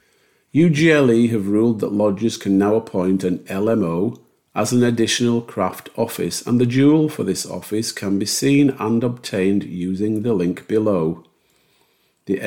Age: 50-69